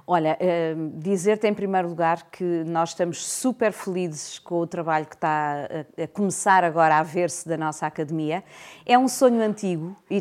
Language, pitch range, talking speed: Portuguese, 170-200 Hz, 165 wpm